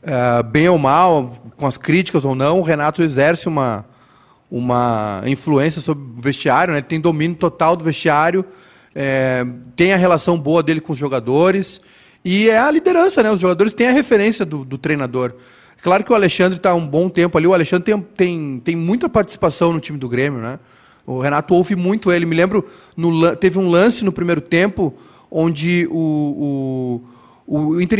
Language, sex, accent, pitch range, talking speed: Portuguese, male, Brazilian, 155-195 Hz, 190 wpm